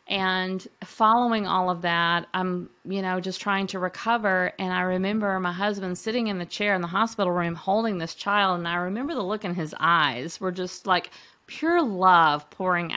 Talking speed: 195 wpm